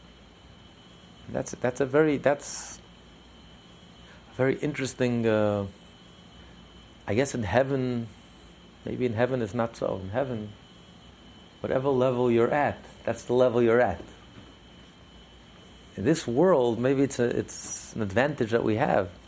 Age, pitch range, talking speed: 50-69, 100-135 Hz, 135 wpm